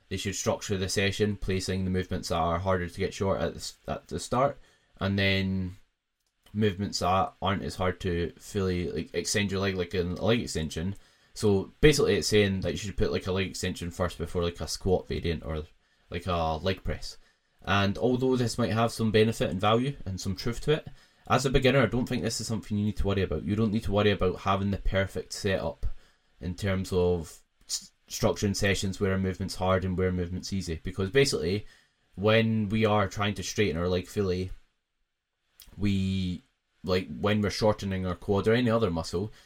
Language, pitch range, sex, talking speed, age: English, 90-110 Hz, male, 200 wpm, 10-29